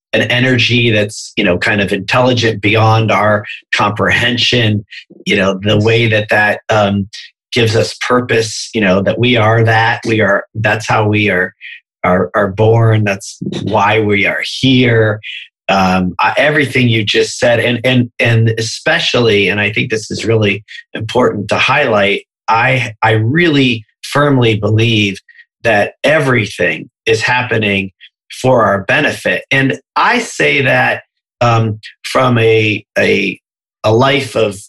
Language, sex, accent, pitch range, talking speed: English, male, American, 105-120 Hz, 140 wpm